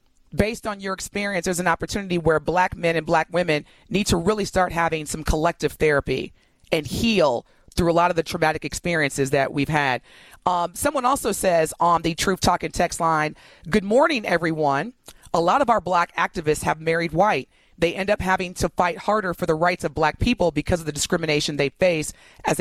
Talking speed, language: 200 wpm, English